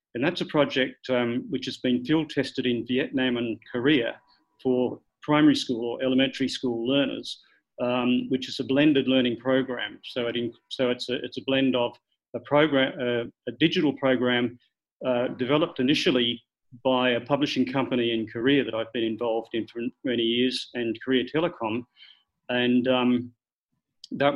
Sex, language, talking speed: male, English, 160 wpm